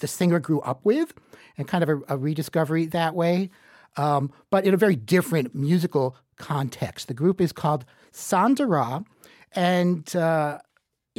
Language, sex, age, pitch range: English, male, 60-79, 130-185 Hz